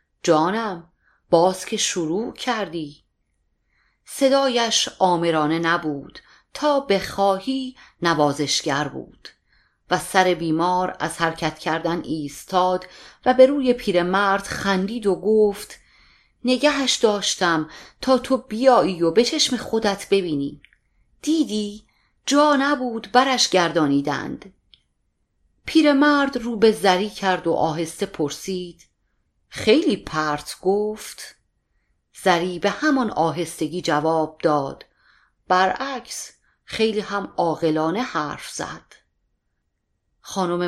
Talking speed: 95 wpm